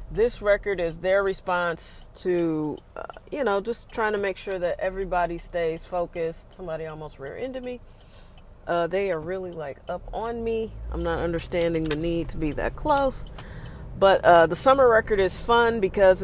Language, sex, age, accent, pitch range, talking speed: English, female, 40-59, American, 165-195 Hz, 175 wpm